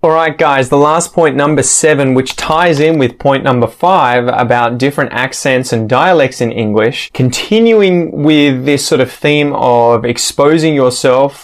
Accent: Australian